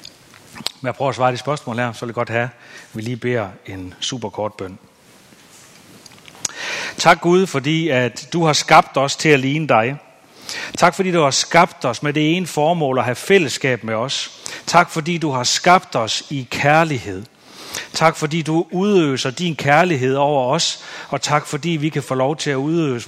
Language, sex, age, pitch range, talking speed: Danish, male, 40-59, 130-165 Hz, 190 wpm